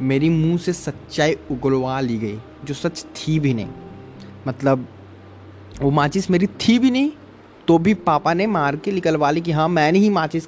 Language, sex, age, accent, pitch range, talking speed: Hindi, male, 20-39, native, 120-160 Hz, 185 wpm